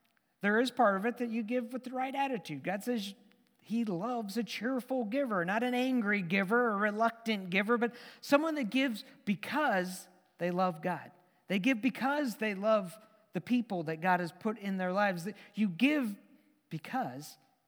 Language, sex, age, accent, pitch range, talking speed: English, male, 50-69, American, 180-245 Hz, 175 wpm